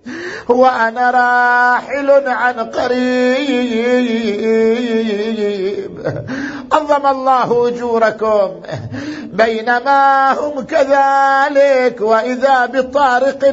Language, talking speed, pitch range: Arabic, 55 wpm, 225-275 Hz